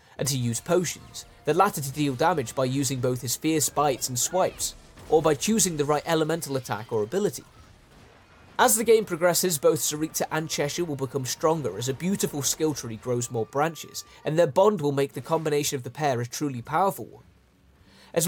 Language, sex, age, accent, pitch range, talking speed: Italian, male, 20-39, British, 125-180 Hz, 195 wpm